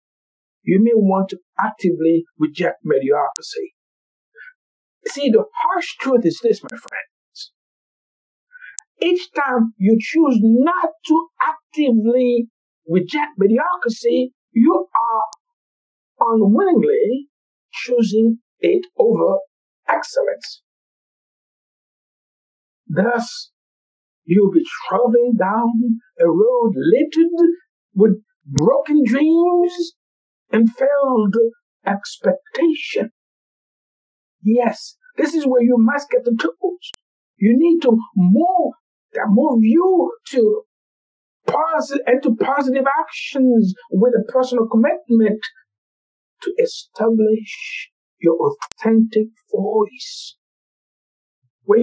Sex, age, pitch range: male, 60-79, 220-335 Hz